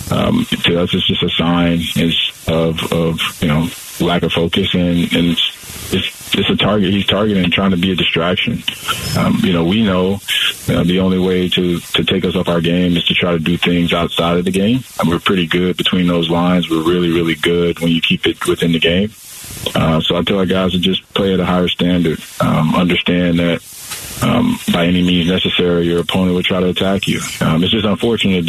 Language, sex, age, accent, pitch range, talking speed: English, male, 20-39, American, 85-95 Hz, 220 wpm